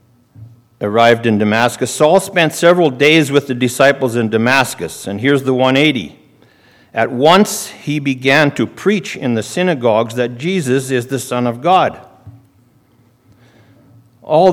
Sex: male